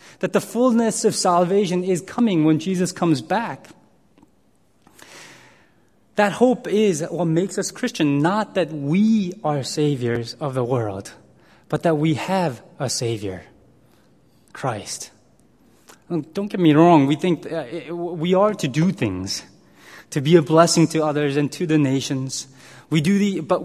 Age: 20-39